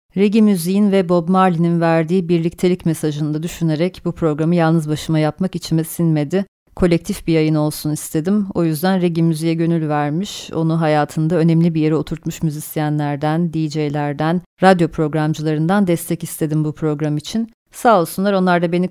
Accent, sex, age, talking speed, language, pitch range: native, female, 30-49, 150 wpm, Turkish, 155-180 Hz